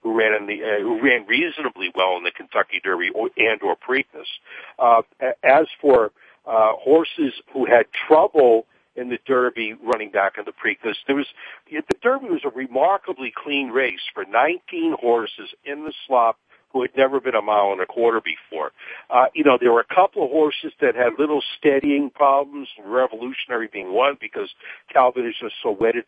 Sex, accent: male, American